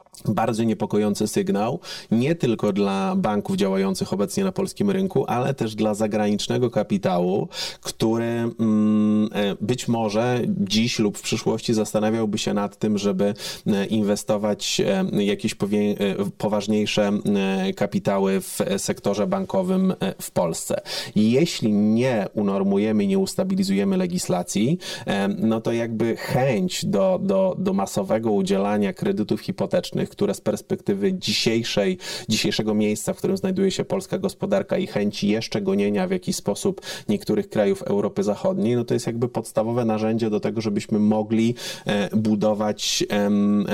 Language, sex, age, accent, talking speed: Polish, male, 30-49, native, 120 wpm